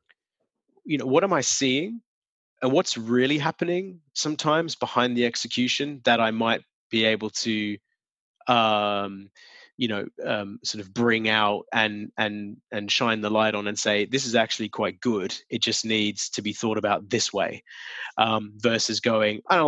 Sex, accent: male, Australian